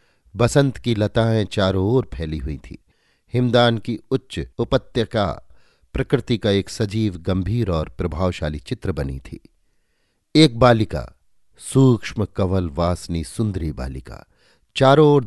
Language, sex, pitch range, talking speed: Hindi, male, 85-120 Hz, 120 wpm